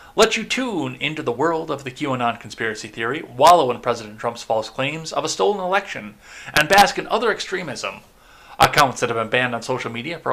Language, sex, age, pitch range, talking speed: English, male, 30-49, 115-155 Hz, 205 wpm